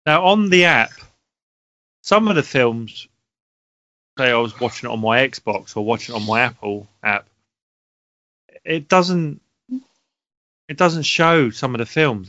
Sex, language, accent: male, English, British